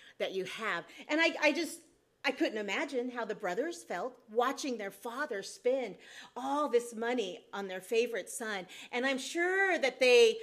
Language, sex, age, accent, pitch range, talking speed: English, female, 40-59, American, 190-285 Hz, 175 wpm